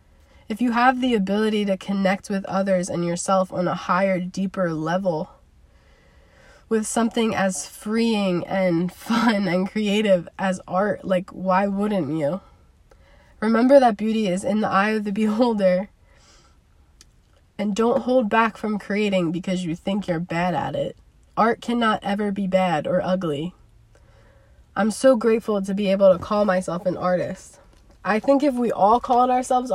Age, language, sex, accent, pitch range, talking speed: 20-39, English, female, American, 180-215 Hz, 155 wpm